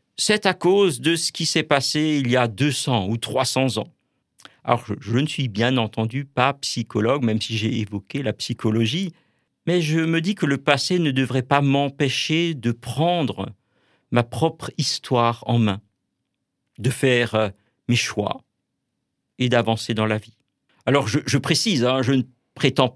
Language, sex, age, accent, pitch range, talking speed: French, male, 50-69, French, 115-140 Hz, 170 wpm